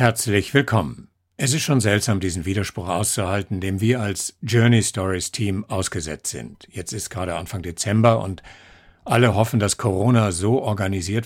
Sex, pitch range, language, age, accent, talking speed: male, 95-120 Hz, German, 60-79, German, 155 wpm